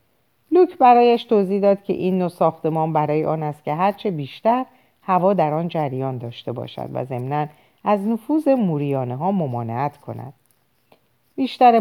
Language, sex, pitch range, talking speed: Persian, female, 145-205 Hz, 140 wpm